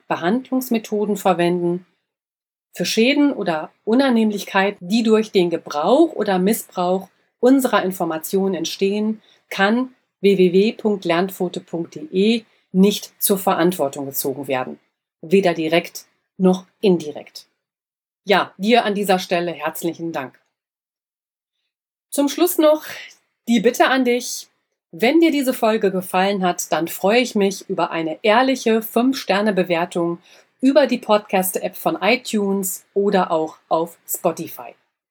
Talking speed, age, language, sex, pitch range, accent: 110 wpm, 40-59, German, female, 180-225 Hz, German